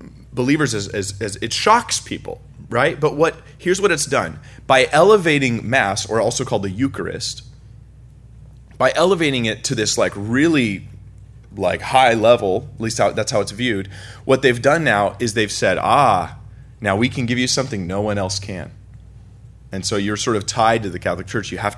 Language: English